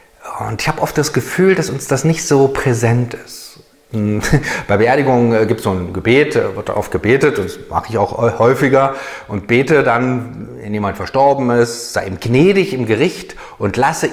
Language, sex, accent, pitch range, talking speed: German, male, German, 110-145 Hz, 180 wpm